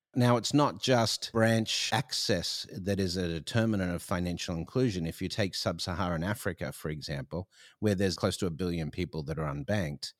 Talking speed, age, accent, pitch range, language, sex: 175 wpm, 50-69, Australian, 85-105 Hz, English, male